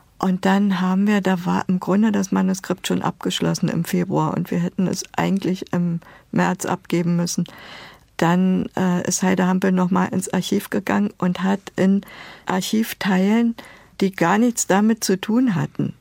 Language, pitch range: German, 175-195 Hz